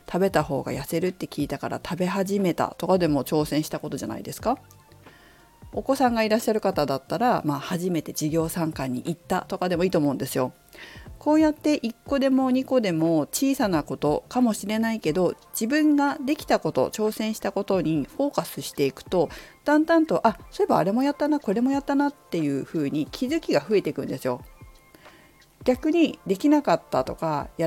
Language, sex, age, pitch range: Japanese, female, 40-59, 160-255 Hz